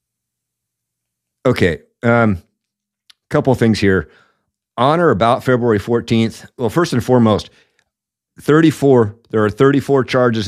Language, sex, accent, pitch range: English, male, American, 95-130 Hz